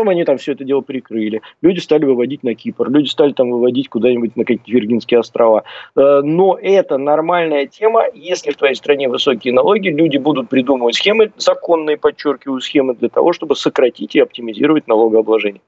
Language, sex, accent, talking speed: Russian, male, native, 170 wpm